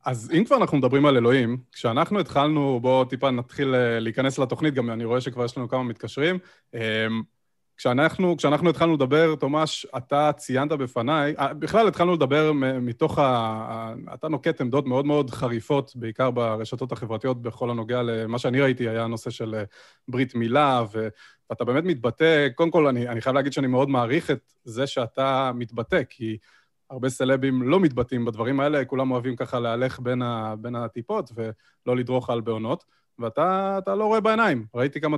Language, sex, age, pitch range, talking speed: Hebrew, male, 20-39, 120-155 Hz, 160 wpm